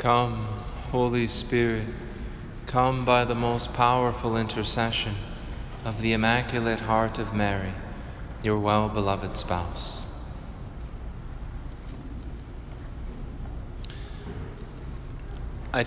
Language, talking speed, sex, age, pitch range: English, 70 wpm, male, 30-49, 115-140 Hz